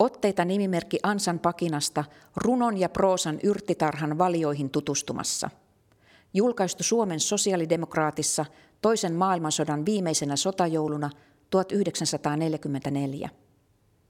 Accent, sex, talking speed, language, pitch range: native, female, 75 wpm, Finnish, 145-180 Hz